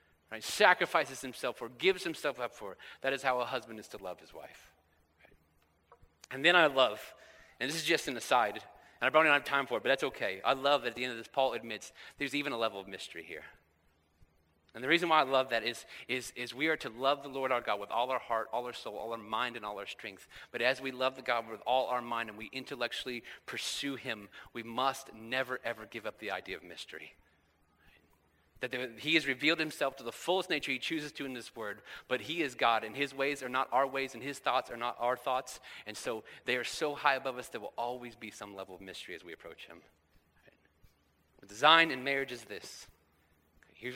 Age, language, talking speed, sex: 30-49, English, 240 wpm, male